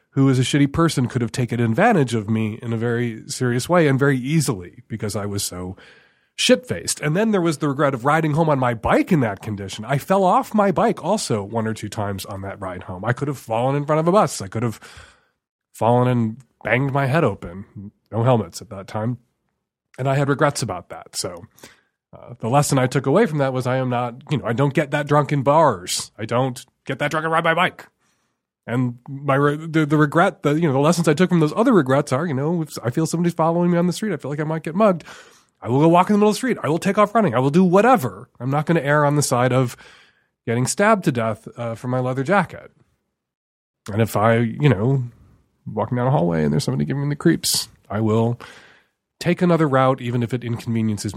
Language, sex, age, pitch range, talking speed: English, male, 30-49, 110-155 Hz, 245 wpm